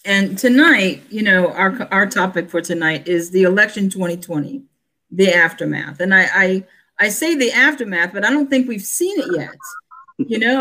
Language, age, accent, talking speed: English, 50-69, American, 180 wpm